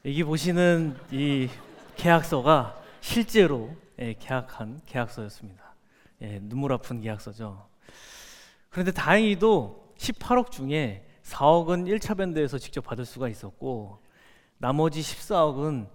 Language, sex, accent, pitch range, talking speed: English, male, Korean, 115-165 Hz, 85 wpm